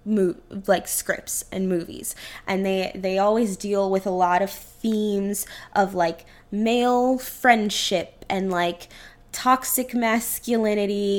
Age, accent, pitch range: 10-29, American, 190-235 Hz